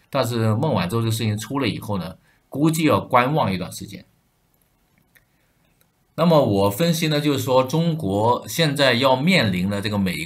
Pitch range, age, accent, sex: 100-135 Hz, 50-69, native, male